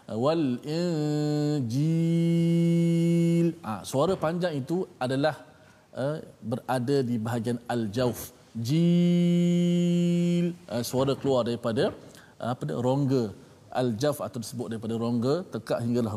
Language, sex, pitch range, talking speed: Malayalam, male, 125-180 Hz, 115 wpm